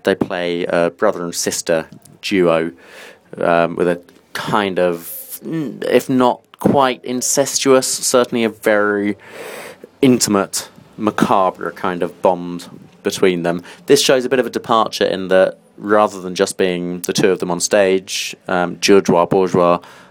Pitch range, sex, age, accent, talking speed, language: 85-110 Hz, male, 30-49, British, 140 wpm, English